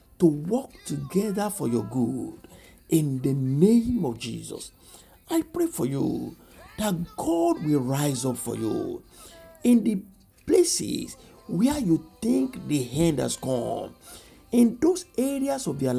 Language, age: English, 60-79